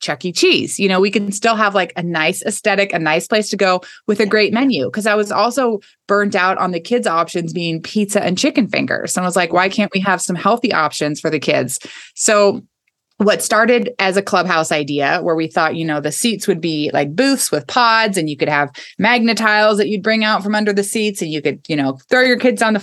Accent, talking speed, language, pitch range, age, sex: American, 245 wpm, English, 160-210 Hz, 20-39, female